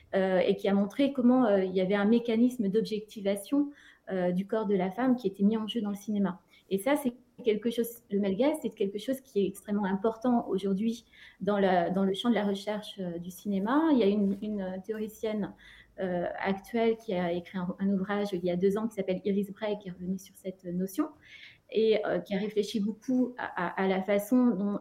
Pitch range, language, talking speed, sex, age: 195-230 Hz, French, 230 wpm, female, 30-49